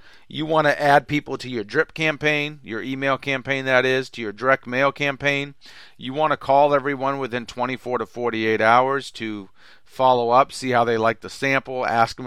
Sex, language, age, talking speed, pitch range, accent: male, English, 40-59, 195 wpm, 115-140 Hz, American